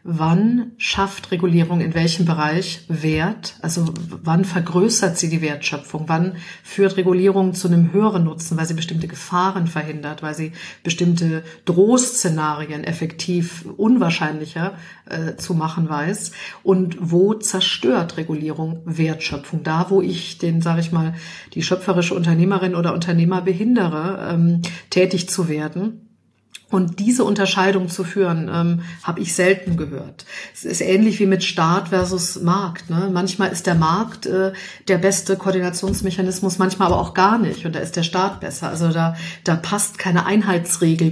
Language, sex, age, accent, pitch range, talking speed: German, female, 50-69, German, 165-190 Hz, 145 wpm